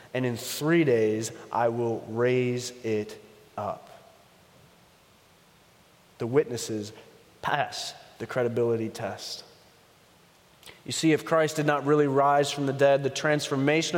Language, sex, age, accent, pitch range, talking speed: English, male, 30-49, American, 135-175 Hz, 120 wpm